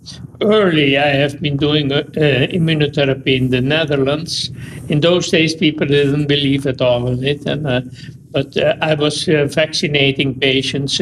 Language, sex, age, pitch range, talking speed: English, male, 60-79, 135-150 Hz, 160 wpm